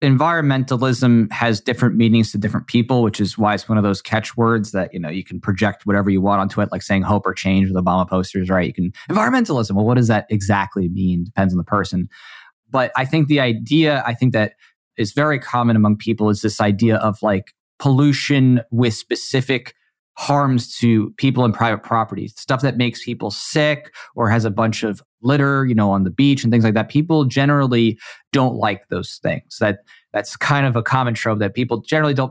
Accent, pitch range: American, 105-130 Hz